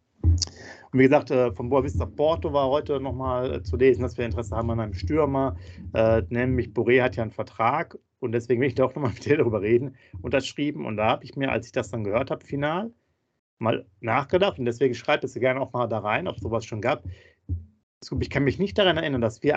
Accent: German